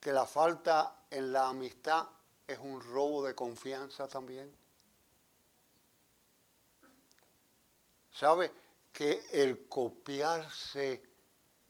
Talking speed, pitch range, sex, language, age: 80 wpm, 135-190 Hz, male, Spanish, 60-79